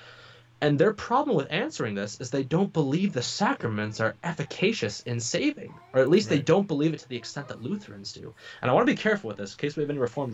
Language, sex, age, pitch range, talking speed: English, male, 20-39, 115-150 Hz, 245 wpm